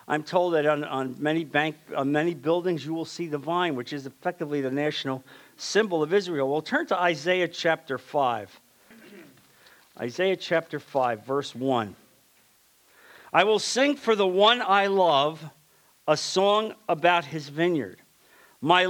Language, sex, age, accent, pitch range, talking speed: English, male, 50-69, American, 140-195 Hz, 150 wpm